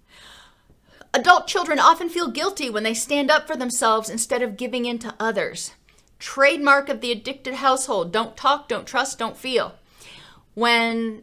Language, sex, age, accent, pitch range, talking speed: English, female, 30-49, American, 215-275 Hz, 155 wpm